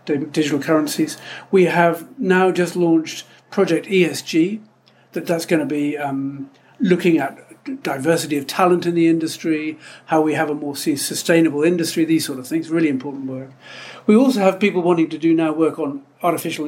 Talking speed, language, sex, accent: 175 wpm, English, male, British